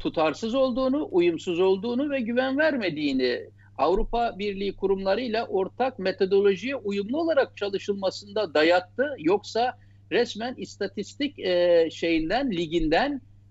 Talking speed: 95 wpm